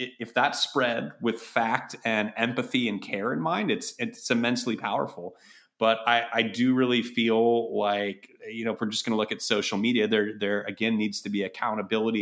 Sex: male